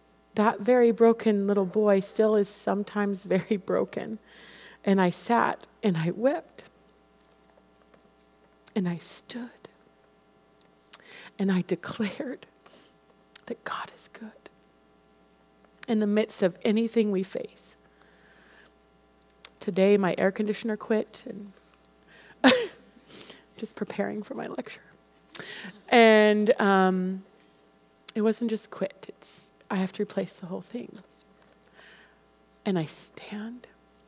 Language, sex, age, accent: English, female, 30-49, American